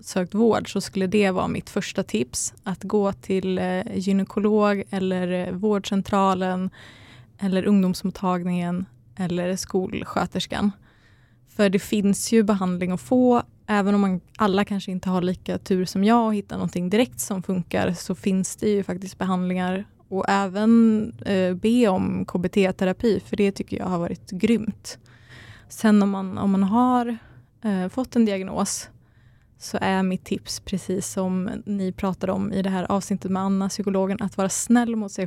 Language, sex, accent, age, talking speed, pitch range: Swedish, female, native, 20-39, 155 wpm, 180-210 Hz